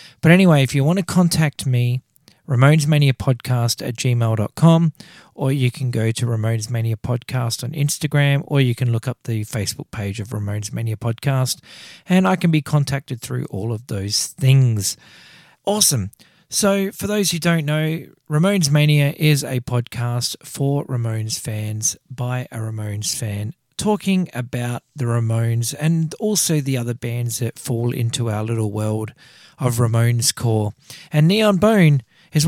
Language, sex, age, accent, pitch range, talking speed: English, male, 40-59, Australian, 115-160 Hz, 160 wpm